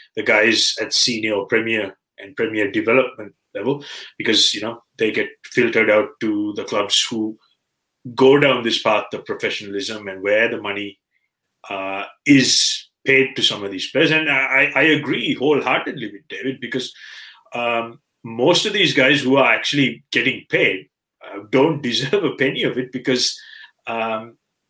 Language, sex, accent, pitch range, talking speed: English, male, Indian, 110-145 Hz, 160 wpm